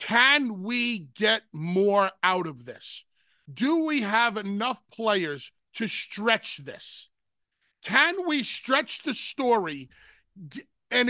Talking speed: 115 wpm